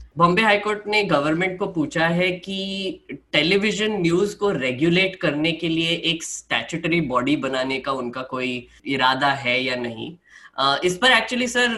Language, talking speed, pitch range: Hindi, 160 wpm, 135-180 Hz